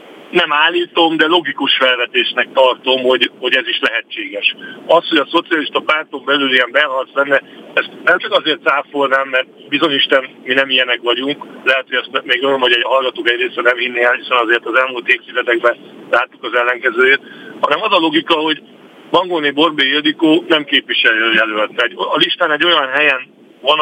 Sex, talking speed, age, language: male, 165 wpm, 50-69, Hungarian